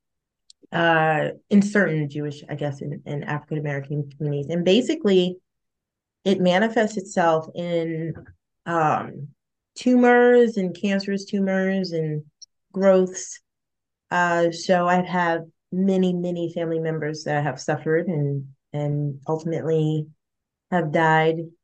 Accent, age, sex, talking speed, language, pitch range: American, 30-49, female, 110 wpm, English, 155-185 Hz